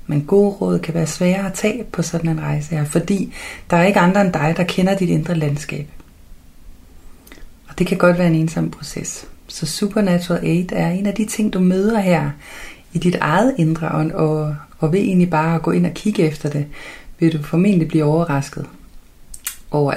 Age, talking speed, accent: 30-49, 200 wpm, native